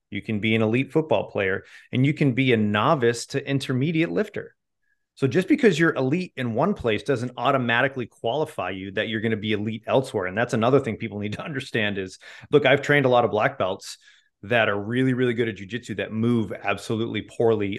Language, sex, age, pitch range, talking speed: English, male, 30-49, 110-140 Hz, 215 wpm